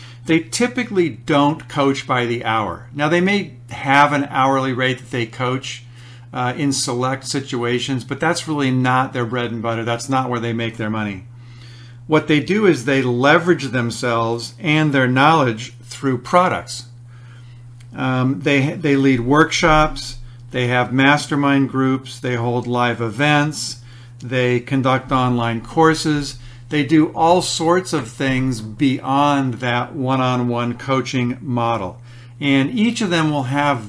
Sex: male